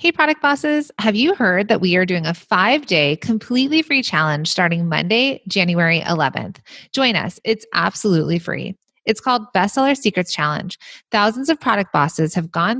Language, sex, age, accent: English, female, 30-49, American